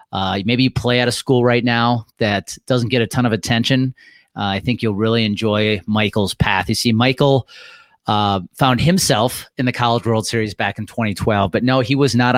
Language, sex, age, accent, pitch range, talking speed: English, male, 30-49, American, 115-140 Hz, 210 wpm